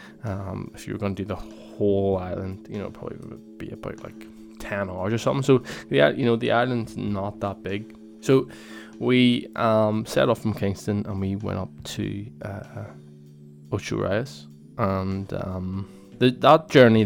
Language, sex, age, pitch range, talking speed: English, male, 20-39, 95-110 Hz, 175 wpm